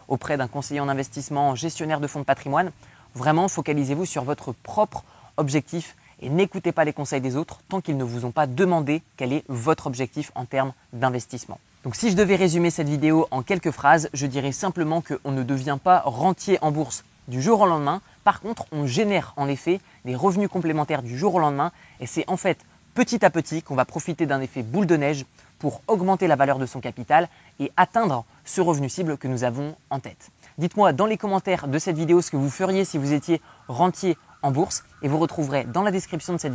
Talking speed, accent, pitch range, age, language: 215 wpm, French, 135-180 Hz, 20-39, French